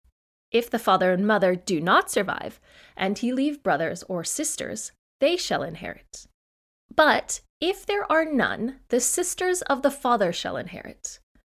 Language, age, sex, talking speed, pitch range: English, 20-39, female, 150 wpm, 185-265 Hz